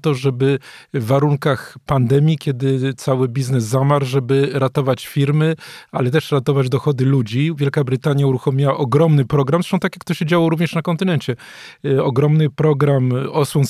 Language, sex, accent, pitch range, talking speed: Polish, male, native, 130-155 Hz, 150 wpm